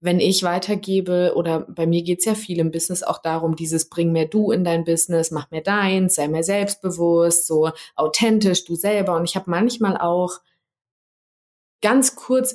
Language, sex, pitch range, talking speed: German, female, 170-205 Hz, 180 wpm